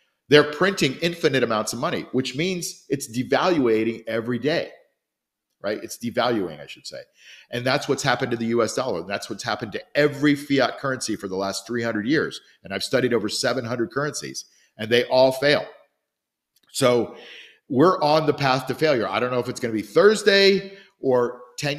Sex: male